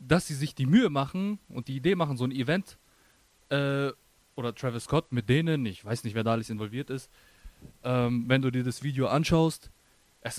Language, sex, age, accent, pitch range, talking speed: German, male, 20-39, German, 115-145 Hz, 200 wpm